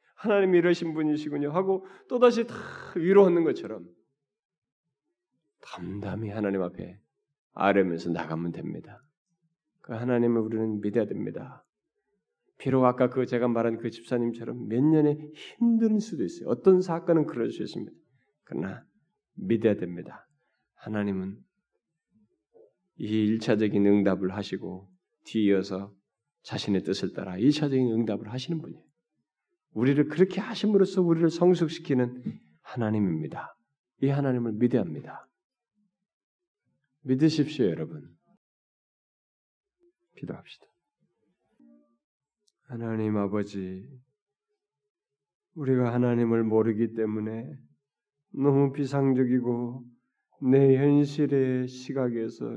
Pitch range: 110-170 Hz